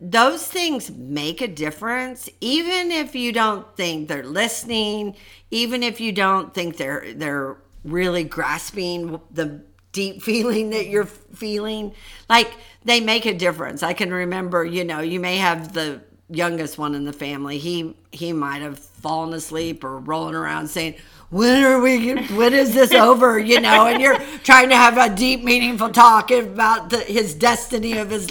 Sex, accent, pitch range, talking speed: female, American, 175-255 Hz, 170 wpm